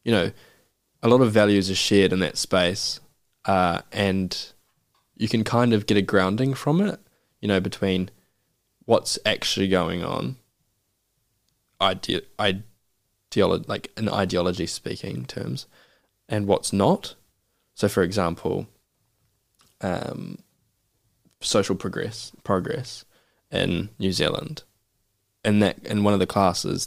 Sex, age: male, 10-29